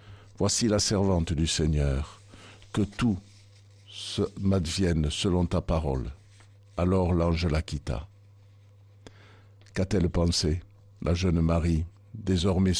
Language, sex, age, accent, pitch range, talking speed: French, male, 60-79, French, 90-105 Hz, 115 wpm